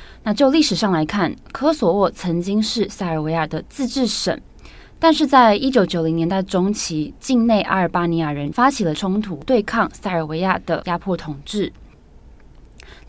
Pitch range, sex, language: 165-225 Hz, female, Chinese